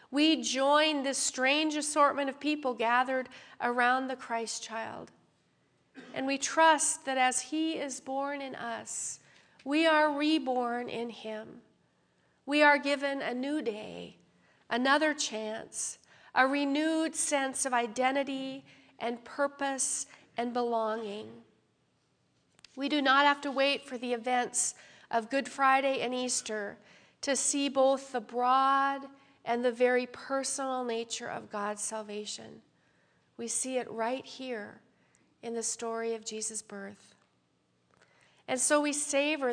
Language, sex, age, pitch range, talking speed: English, female, 40-59, 230-275 Hz, 130 wpm